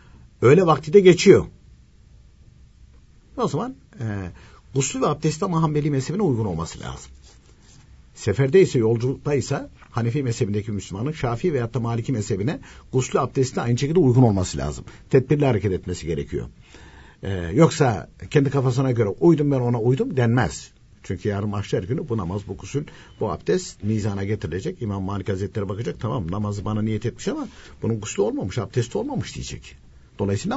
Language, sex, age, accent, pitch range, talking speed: Turkish, male, 60-79, native, 100-135 Hz, 150 wpm